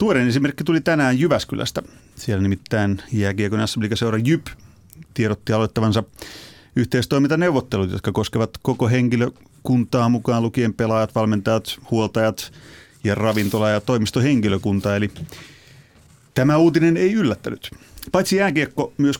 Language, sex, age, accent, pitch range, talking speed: Finnish, male, 30-49, native, 105-135 Hz, 105 wpm